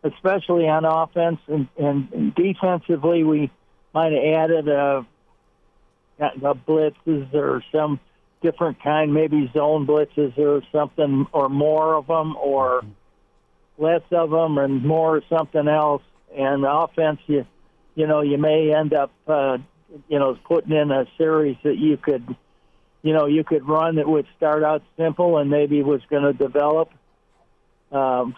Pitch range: 140-160 Hz